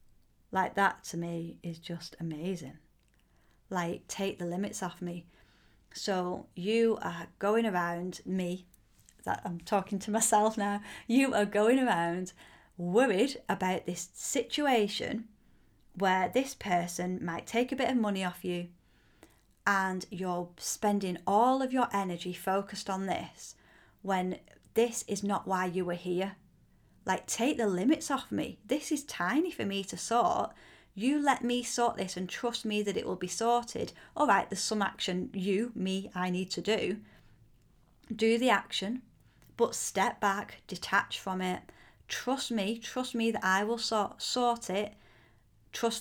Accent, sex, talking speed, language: British, female, 155 wpm, English